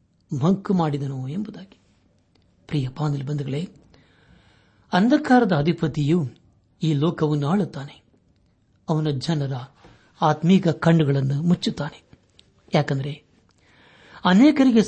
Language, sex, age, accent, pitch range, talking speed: Kannada, male, 60-79, native, 115-170 Hz, 75 wpm